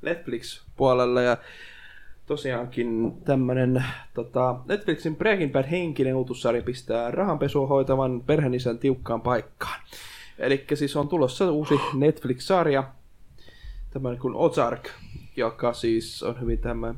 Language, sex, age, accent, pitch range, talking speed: Finnish, male, 20-39, native, 115-135 Hz, 100 wpm